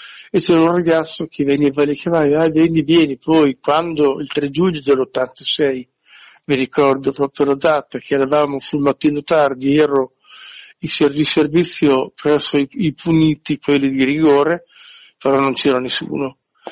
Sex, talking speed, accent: male, 160 wpm, native